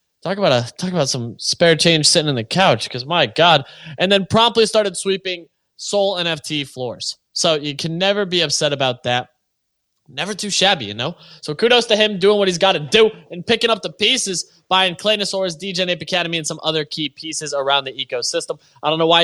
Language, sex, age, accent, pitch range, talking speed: English, male, 20-39, American, 140-190 Hz, 210 wpm